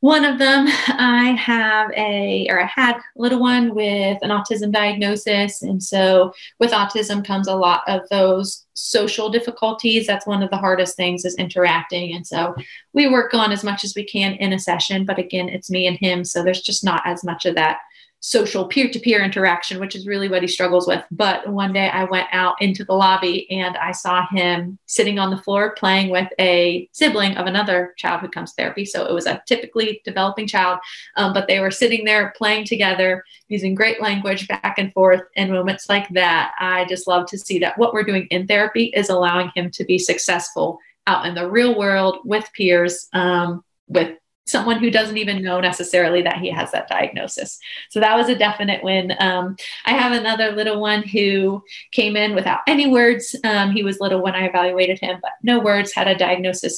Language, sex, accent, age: English, female, American, 30-49